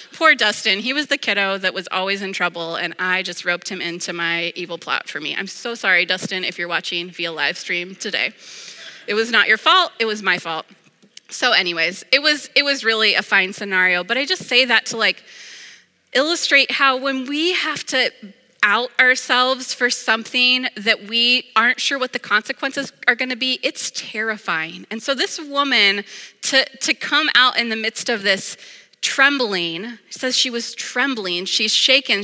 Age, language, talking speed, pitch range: 20-39, English, 190 wpm, 195-255 Hz